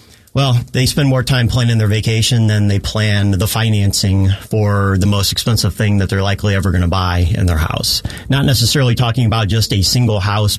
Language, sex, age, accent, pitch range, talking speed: English, male, 40-59, American, 100-115 Hz, 205 wpm